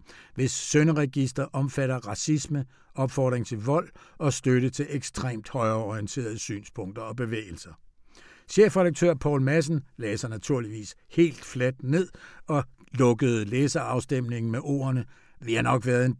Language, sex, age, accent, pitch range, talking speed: Danish, male, 60-79, native, 125-170 Hz, 120 wpm